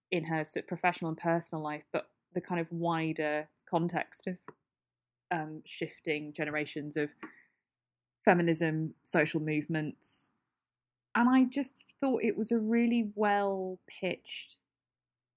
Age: 20-39